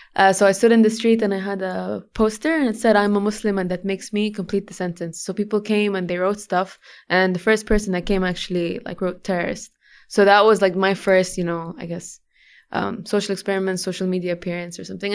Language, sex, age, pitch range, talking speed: English, female, 20-39, 185-225 Hz, 240 wpm